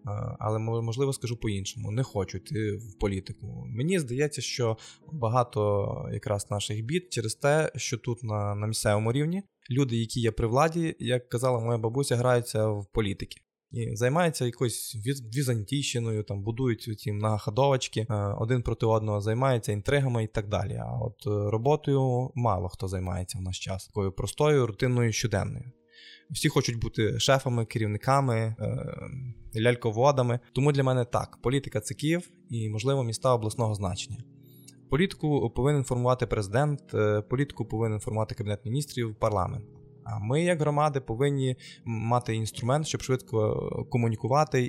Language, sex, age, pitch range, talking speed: Ukrainian, male, 20-39, 110-135 Hz, 140 wpm